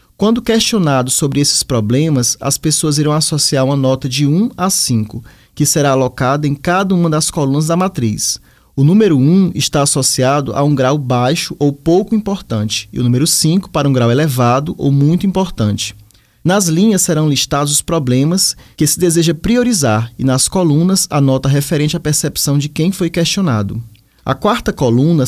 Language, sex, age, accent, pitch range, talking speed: Portuguese, male, 20-39, Brazilian, 130-170 Hz, 175 wpm